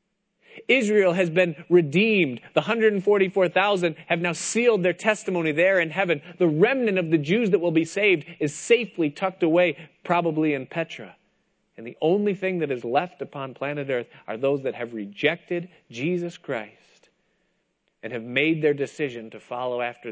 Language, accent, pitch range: English, American, 145-190 Hz